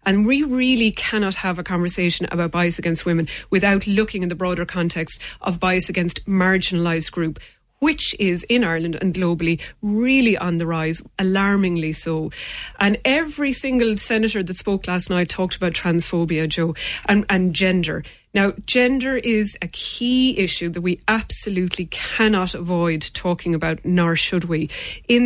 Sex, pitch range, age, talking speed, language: female, 175-215 Hz, 30-49, 155 wpm, English